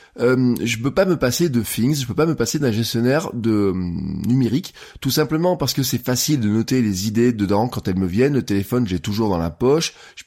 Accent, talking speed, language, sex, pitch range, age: French, 235 wpm, French, male, 105-135 Hz, 20-39